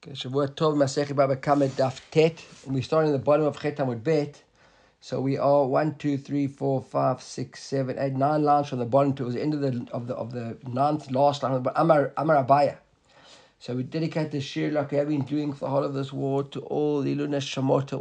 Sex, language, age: male, English, 50-69